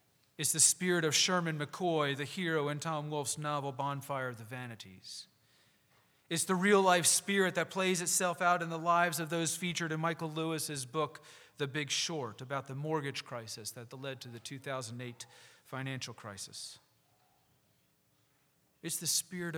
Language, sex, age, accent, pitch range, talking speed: English, male, 40-59, American, 135-185 Hz, 155 wpm